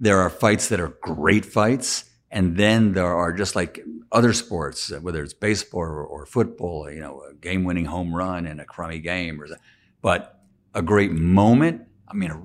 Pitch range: 85-105 Hz